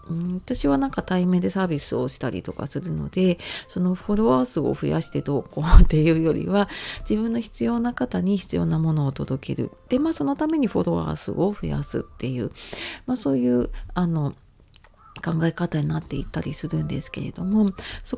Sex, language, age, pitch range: female, Japanese, 40-59, 150-215 Hz